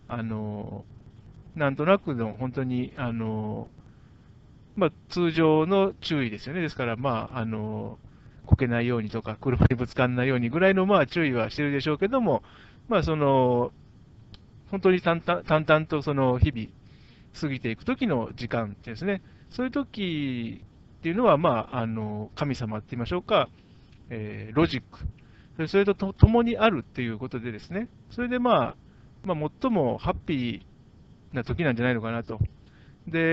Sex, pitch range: male, 115-165 Hz